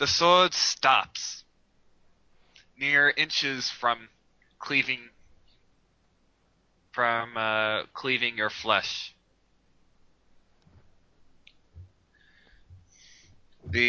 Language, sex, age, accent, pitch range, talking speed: English, male, 20-39, American, 105-130 Hz, 55 wpm